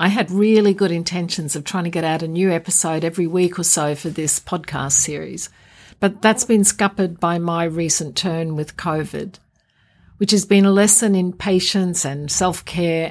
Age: 50-69